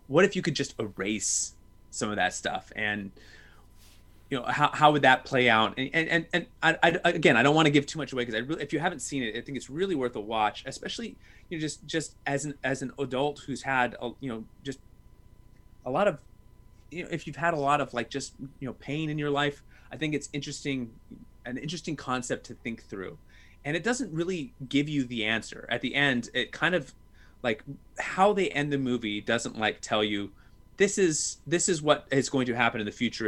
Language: English